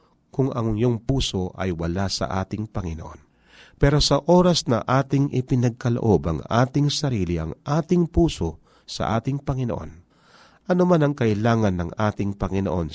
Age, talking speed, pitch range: 40-59, 140 wpm, 100-150 Hz